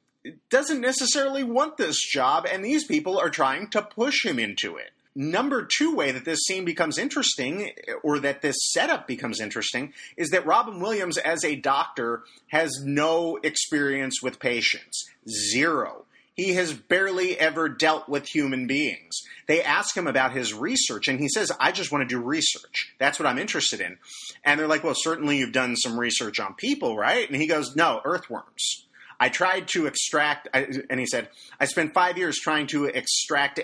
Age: 30-49